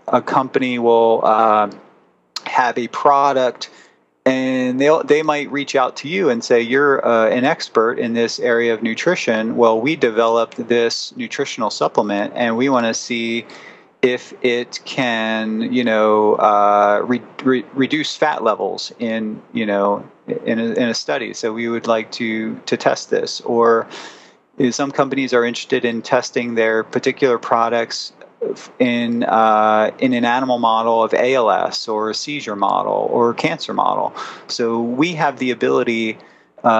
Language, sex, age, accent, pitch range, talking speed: English, male, 30-49, American, 110-125 Hz, 155 wpm